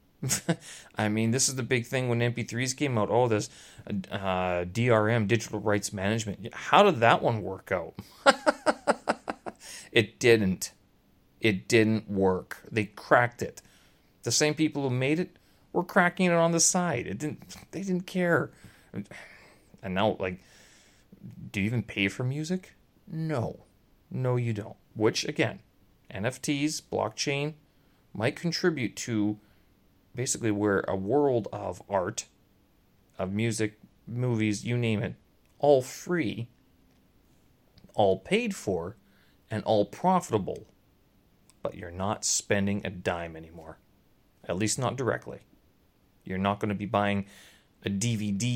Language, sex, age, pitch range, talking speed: English, male, 30-49, 95-125 Hz, 135 wpm